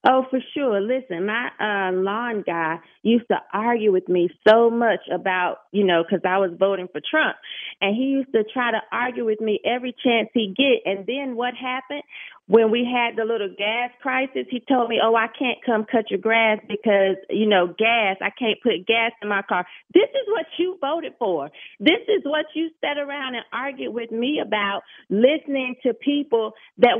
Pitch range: 205-265 Hz